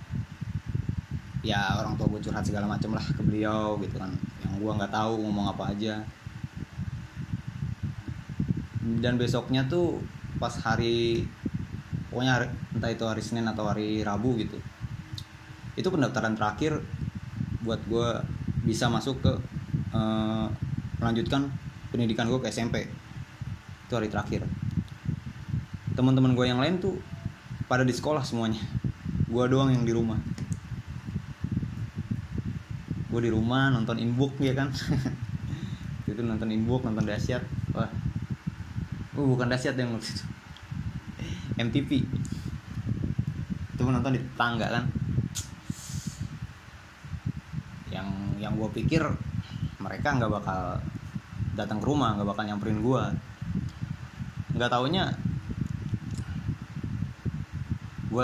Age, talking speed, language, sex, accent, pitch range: 20-39, 110 wpm, Indonesian, male, native, 110-130 Hz